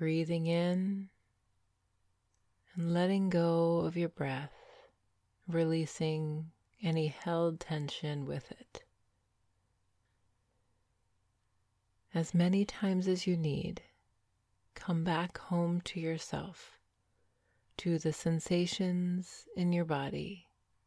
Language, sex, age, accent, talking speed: English, female, 30-49, American, 90 wpm